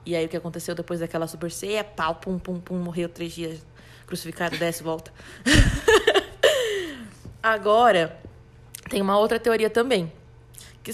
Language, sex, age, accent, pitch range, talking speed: Portuguese, female, 20-39, Brazilian, 170-220 Hz, 135 wpm